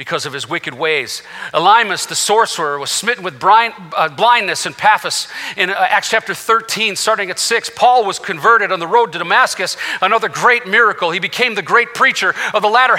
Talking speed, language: 200 wpm, English